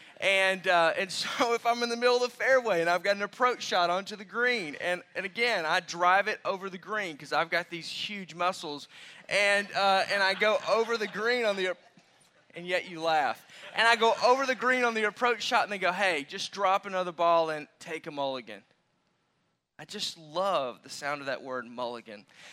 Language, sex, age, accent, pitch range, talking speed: English, male, 20-39, American, 155-200 Hz, 215 wpm